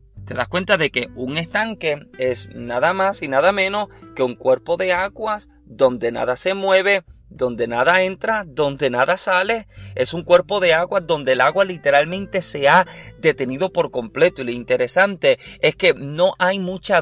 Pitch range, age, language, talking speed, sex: 135-195 Hz, 30-49, Spanish, 175 wpm, male